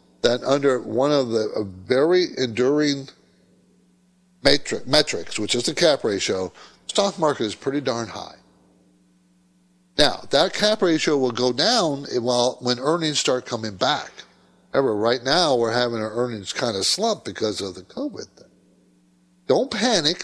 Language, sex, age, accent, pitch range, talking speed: English, male, 60-79, American, 105-175 Hz, 145 wpm